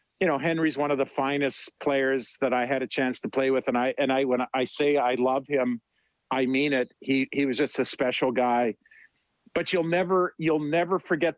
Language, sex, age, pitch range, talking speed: English, male, 50-69, 130-145 Hz, 220 wpm